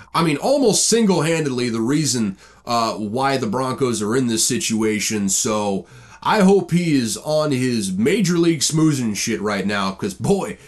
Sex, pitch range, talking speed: male, 115-175 Hz, 165 wpm